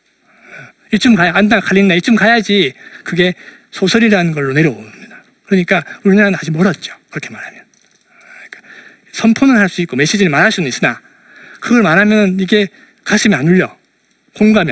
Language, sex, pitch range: Korean, male, 175-230 Hz